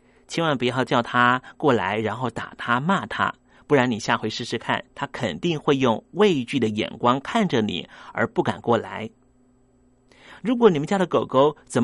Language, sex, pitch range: Chinese, male, 125-175 Hz